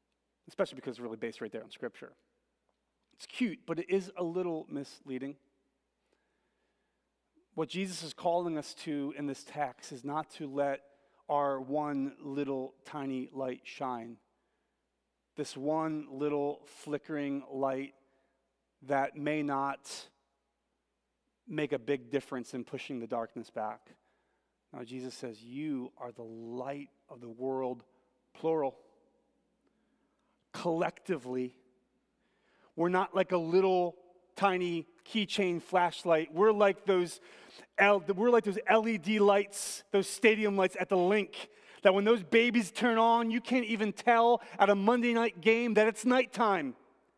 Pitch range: 135-200 Hz